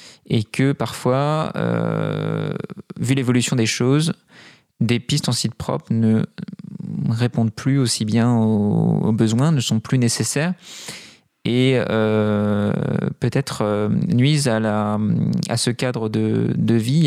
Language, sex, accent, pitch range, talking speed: French, male, French, 110-145 Hz, 135 wpm